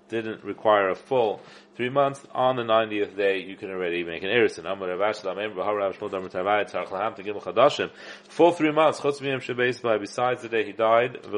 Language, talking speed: English, 125 wpm